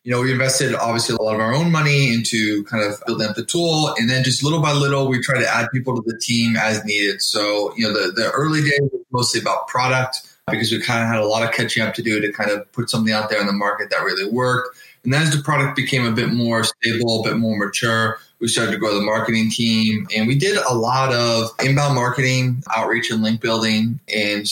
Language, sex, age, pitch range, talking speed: English, male, 20-39, 105-125 Hz, 250 wpm